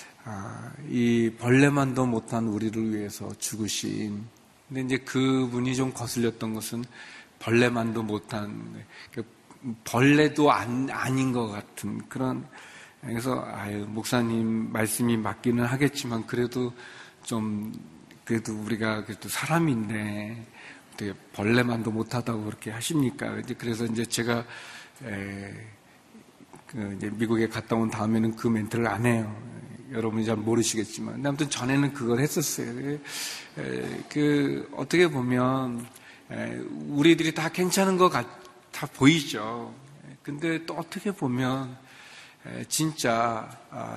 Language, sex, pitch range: Korean, male, 110-145 Hz